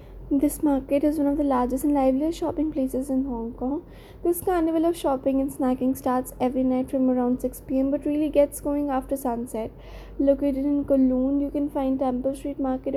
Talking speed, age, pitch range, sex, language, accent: 195 wpm, 20-39, 260-300 Hz, female, English, Indian